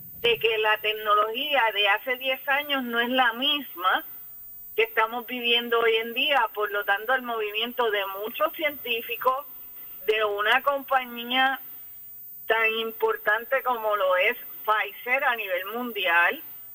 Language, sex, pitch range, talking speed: Spanish, female, 205-260 Hz, 135 wpm